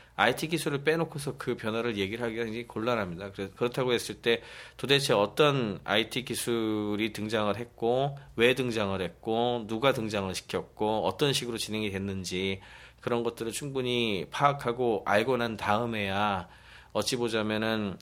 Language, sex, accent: Korean, male, native